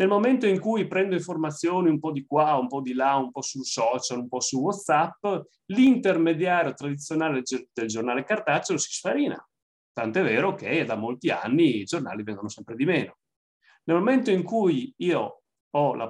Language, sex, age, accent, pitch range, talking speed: Italian, male, 30-49, native, 130-200 Hz, 180 wpm